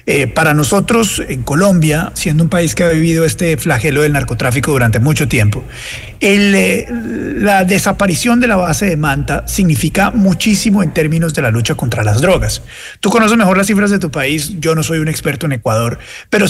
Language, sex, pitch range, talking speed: Spanish, male, 145-200 Hz, 190 wpm